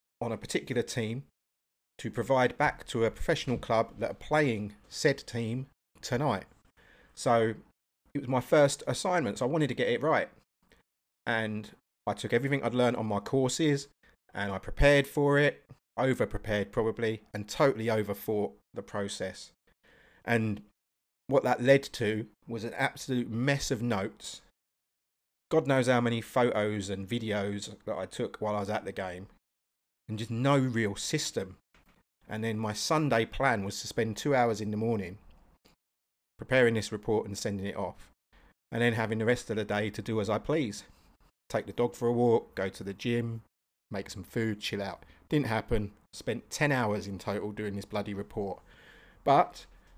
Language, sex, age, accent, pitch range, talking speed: English, male, 30-49, British, 100-125 Hz, 170 wpm